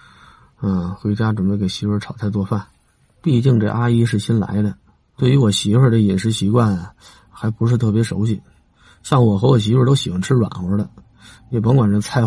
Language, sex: Chinese, male